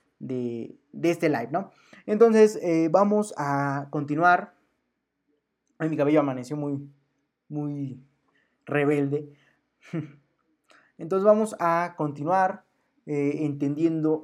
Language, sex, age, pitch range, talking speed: Spanish, male, 20-39, 145-195 Hz, 95 wpm